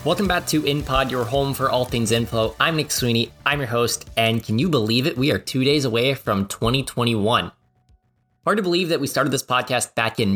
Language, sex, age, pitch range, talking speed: English, male, 20-39, 115-150 Hz, 220 wpm